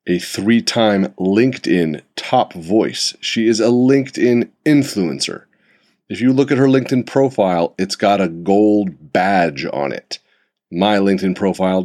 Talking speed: 140 wpm